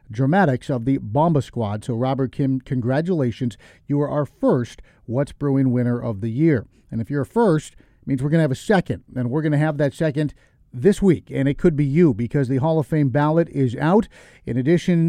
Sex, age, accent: male, 40-59, American